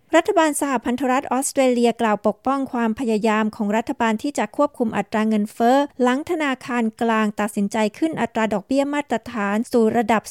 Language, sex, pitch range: Thai, female, 220-265 Hz